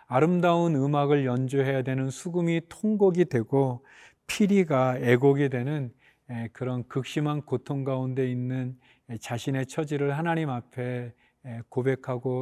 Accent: native